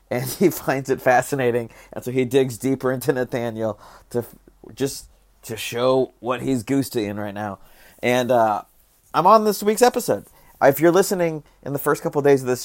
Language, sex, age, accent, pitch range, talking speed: English, male, 30-49, American, 120-150 Hz, 195 wpm